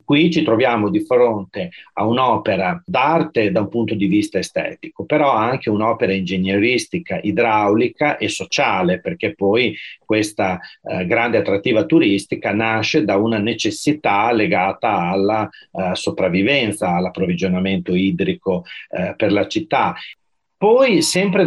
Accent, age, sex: native, 40-59, male